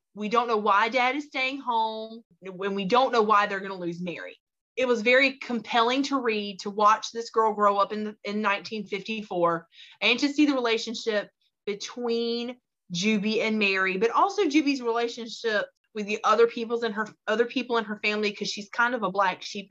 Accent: American